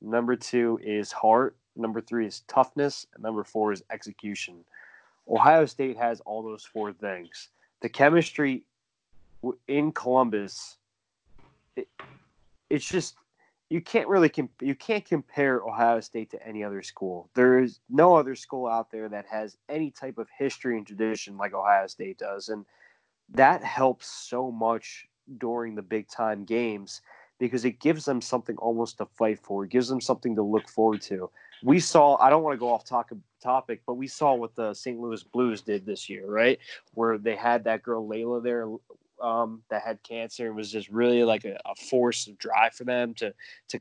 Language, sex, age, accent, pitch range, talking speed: English, male, 20-39, American, 110-125 Hz, 180 wpm